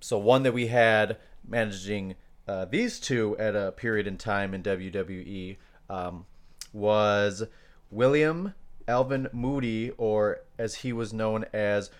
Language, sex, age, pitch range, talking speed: English, male, 30-49, 95-115 Hz, 135 wpm